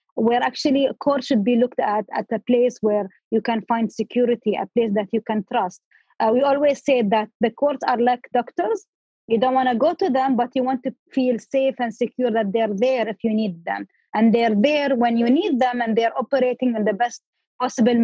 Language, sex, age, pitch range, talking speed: English, female, 20-39, 225-260 Hz, 225 wpm